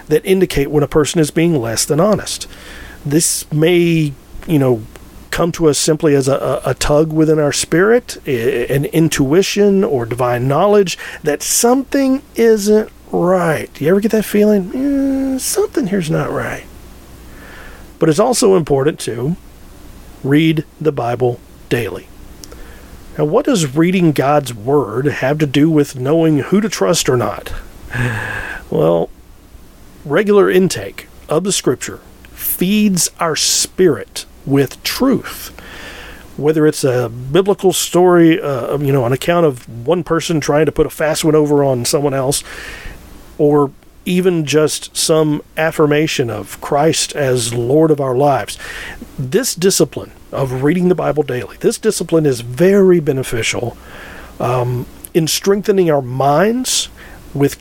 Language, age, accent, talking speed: English, 40-59, American, 140 wpm